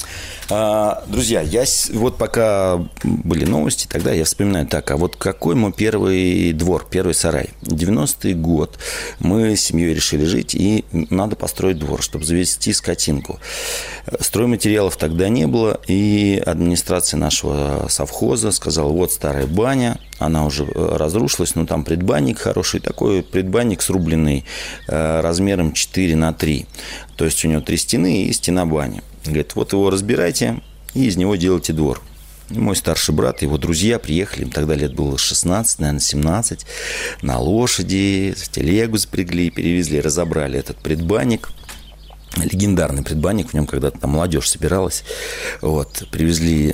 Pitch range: 75-95 Hz